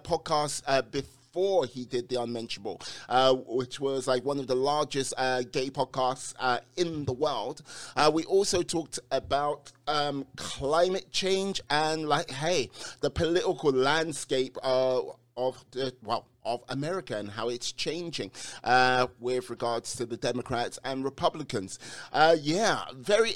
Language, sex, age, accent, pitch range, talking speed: English, male, 30-49, British, 125-170 Hz, 150 wpm